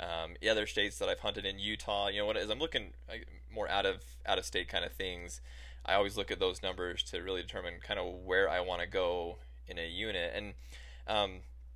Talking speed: 230 wpm